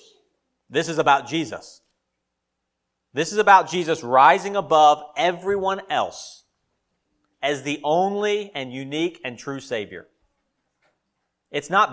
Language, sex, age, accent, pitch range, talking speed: English, male, 40-59, American, 130-185 Hz, 110 wpm